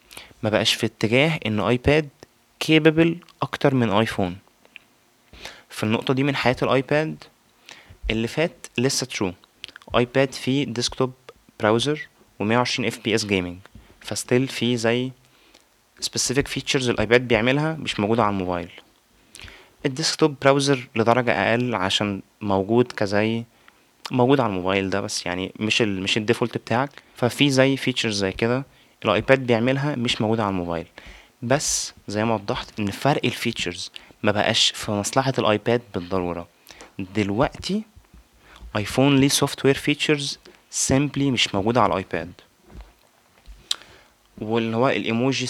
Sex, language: male, Arabic